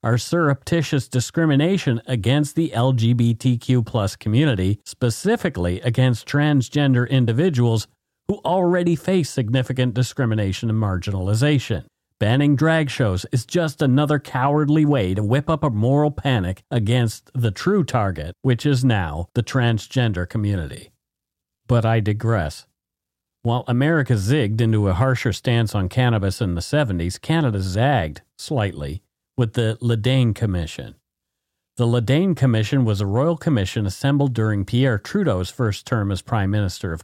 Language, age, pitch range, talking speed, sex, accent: English, 50-69, 105-140 Hz, 135 wpm, male, American